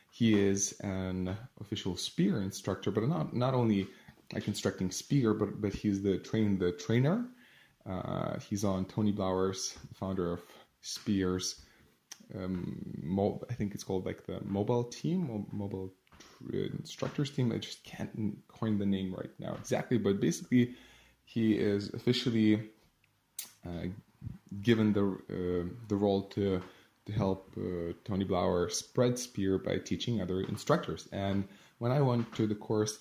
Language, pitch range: English, 95-110 Hz